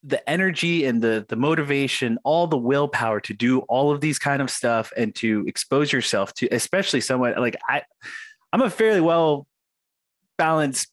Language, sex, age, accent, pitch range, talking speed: English, male, 30-49, American, 110-145 Hz, 170 wpm